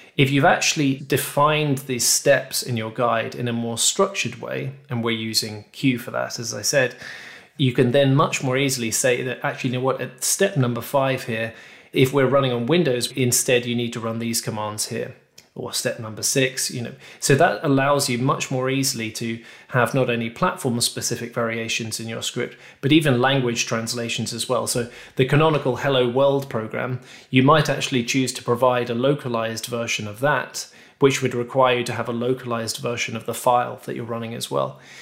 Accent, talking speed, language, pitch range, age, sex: British, 200 wpm, English, 120-140 Hz, 20-39, male